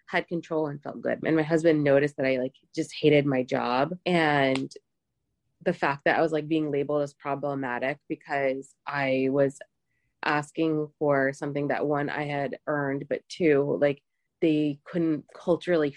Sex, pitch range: female, 145-185 Hz